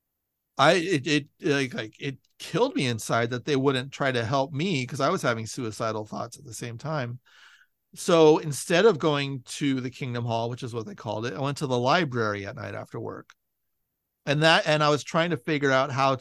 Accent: American